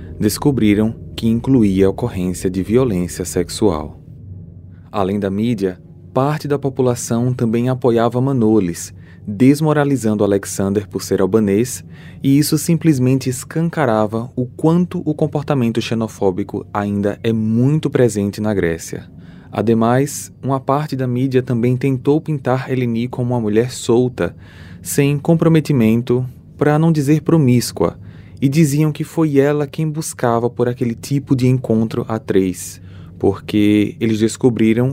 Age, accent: 20-39, Brazilian